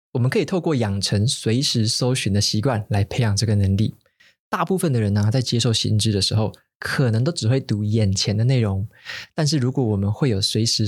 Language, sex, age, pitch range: Chinese, male, 20-39, 110-140 Hz